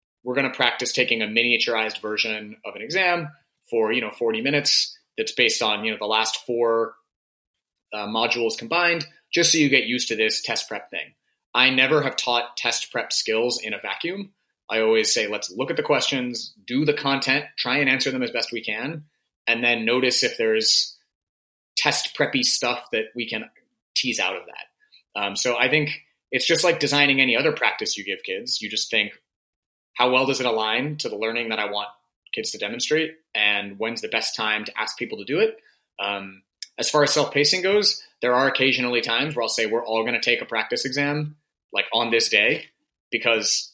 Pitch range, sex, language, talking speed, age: 115-170 Hz, male, English, 205 wpm, 30-49